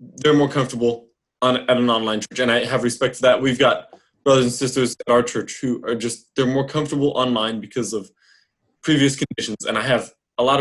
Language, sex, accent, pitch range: English, male, American, 120-150 Hz